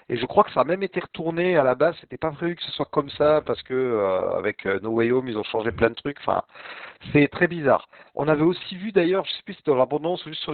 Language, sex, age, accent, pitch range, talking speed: French, male, 50-69, French, 130-170 Hz, 300 wpm